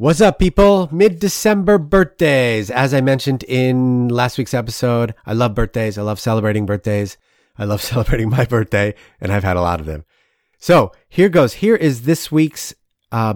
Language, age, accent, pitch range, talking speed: English, 30-49, American, 100-130 Hz, 175 wpm